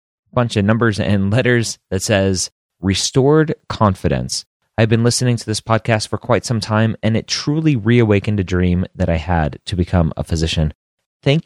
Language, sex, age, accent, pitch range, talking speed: English, male, 30-49, American, 85-115 Hz, 175 wpm